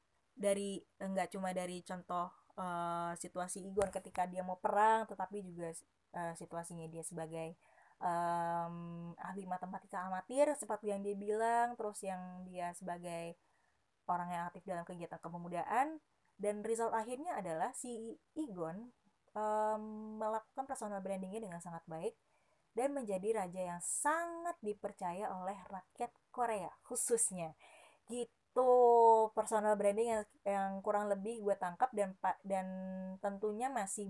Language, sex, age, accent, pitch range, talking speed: Indonesian, female, 20-39, native, 175-220 Hz, 130 wpm